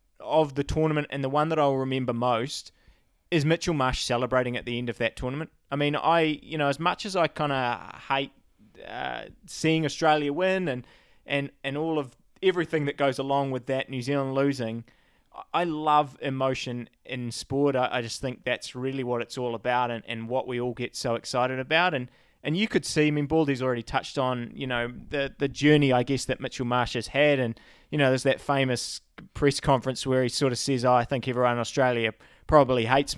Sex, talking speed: male, 210 wpm